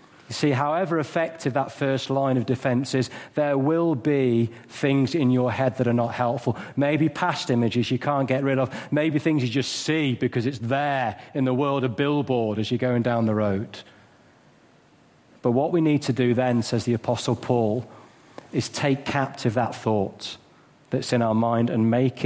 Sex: male